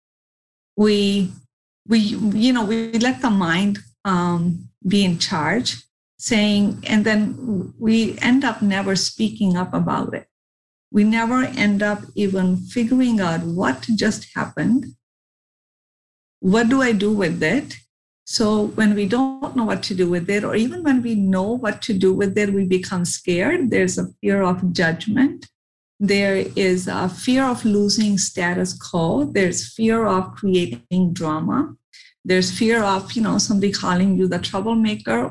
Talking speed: 155 wpm